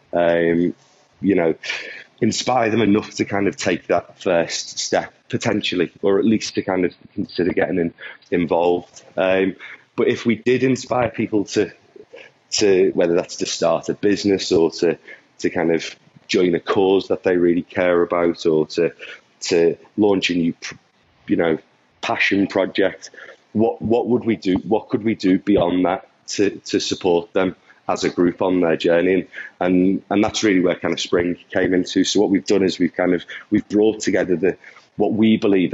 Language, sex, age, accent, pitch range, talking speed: English, male, 30-49, British, 85-105 Hz, 180 wpm